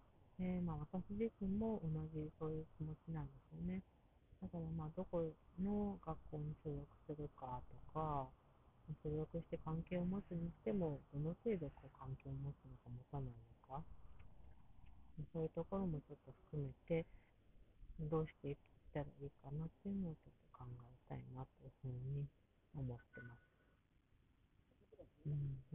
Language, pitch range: Japanese, 135-185 Hz